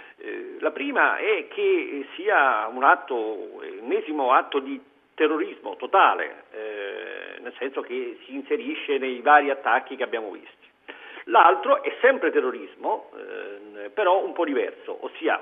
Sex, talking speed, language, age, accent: male, 125 wpm, Italian, 50-69, native